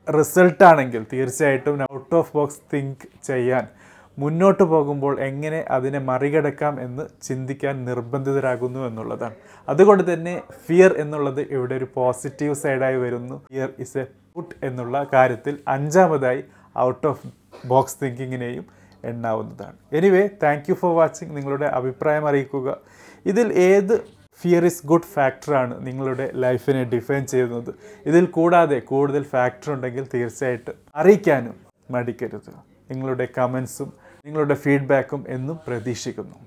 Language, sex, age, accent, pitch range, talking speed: Malayalam, male, 30-49, native, 130-160 Hz, 110 wpm